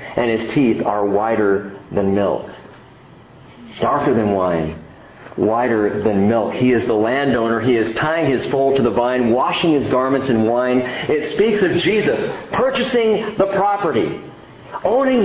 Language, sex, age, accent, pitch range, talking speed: English, male, 50-69, American, 115-180 Hz, 150 wpm